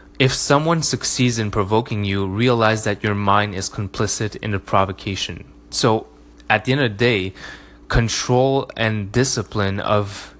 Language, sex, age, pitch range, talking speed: English, male, 20-39, 95-115 Hz, 150 wpm